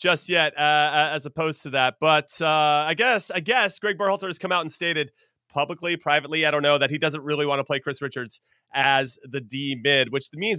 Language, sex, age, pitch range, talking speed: English, male, 30-49, 155-215 Hz, 225 wpm